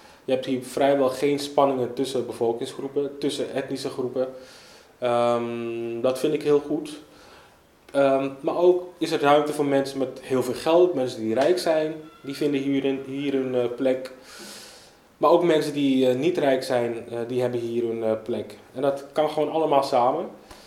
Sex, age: male, 20-39